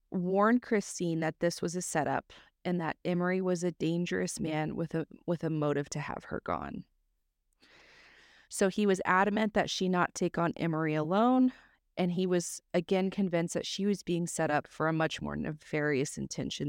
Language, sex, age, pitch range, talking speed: English, female, 30-49, 165-205 Hz, 185 wpm